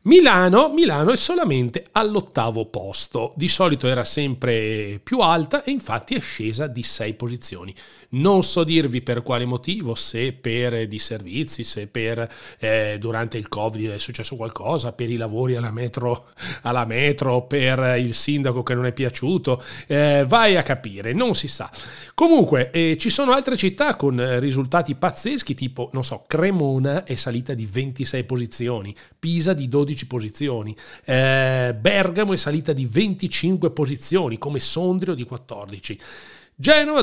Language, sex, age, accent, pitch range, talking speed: Italian, male, 40-59, native, 120-165 Hz, 150 wpm